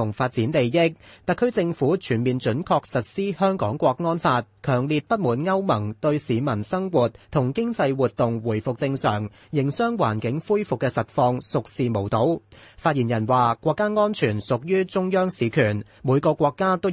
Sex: male